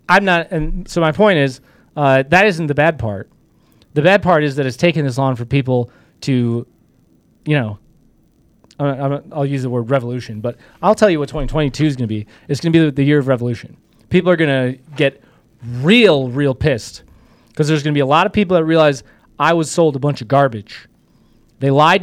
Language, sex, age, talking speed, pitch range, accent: English, male, 30-49, 220 wpm, 130-165 Hz, American